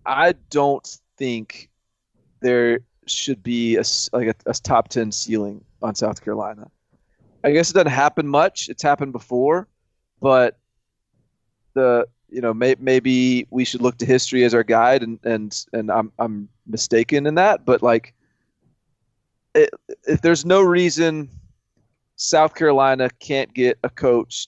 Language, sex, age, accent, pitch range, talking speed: English, male, 30-49, American, 115-150 Hz, 145 wpm